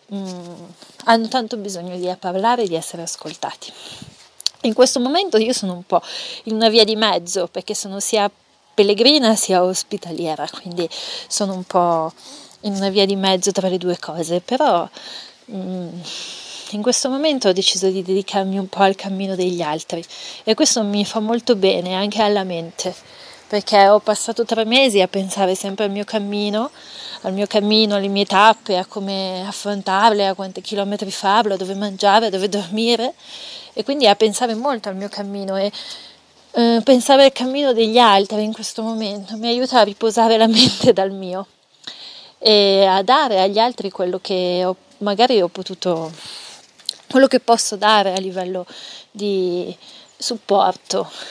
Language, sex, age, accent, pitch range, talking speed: Italian, female, 30-49, native, 190-225 Hz, 165 wpm